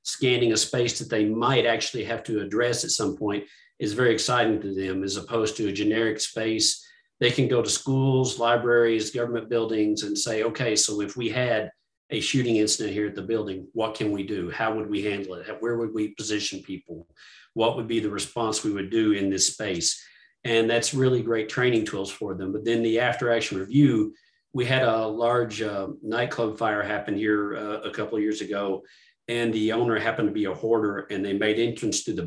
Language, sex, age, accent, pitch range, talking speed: English, male, 40-59, American, 105-120 Hz, 210 wpm